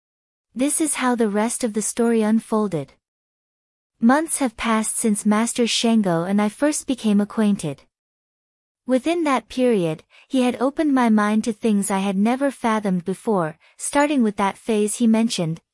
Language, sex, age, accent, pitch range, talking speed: English, female, 20-39, American, 200-250 Hz, 155 wpm